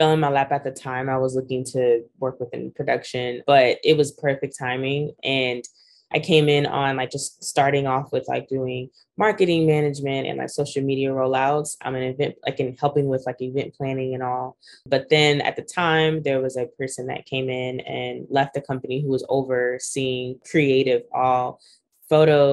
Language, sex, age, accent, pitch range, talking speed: English, female, 20-39, American, 130-150 Hz, 190 wpm